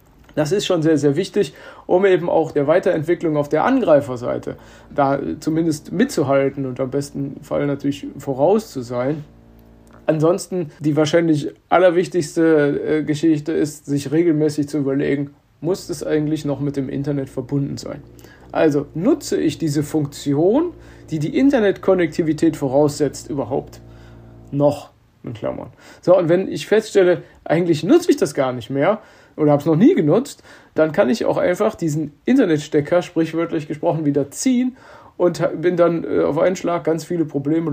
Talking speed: 150 wpm